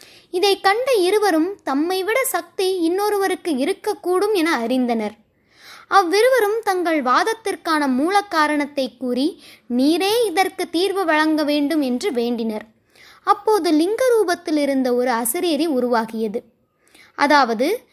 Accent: native